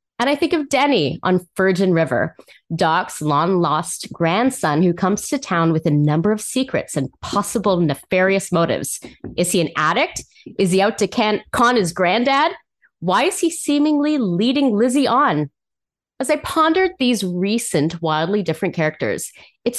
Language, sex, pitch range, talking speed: English, female, 170-245 Hz, 160 wpm